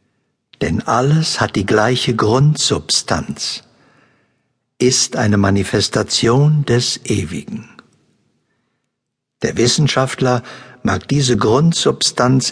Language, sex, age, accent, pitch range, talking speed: German, male, 60-79, German, 110-135 Hz, 75 wpm